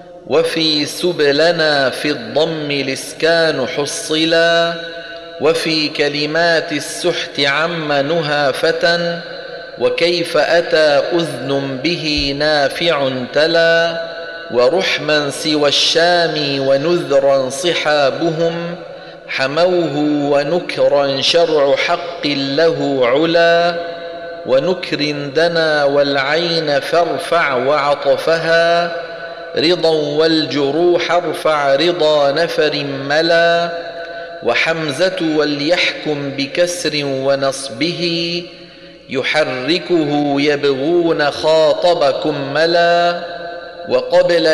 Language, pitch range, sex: Arabic, 145-170 Hz, male